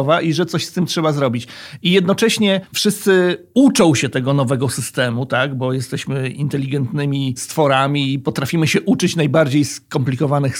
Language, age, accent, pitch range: Polish, 40-59, native, 140-180 Hz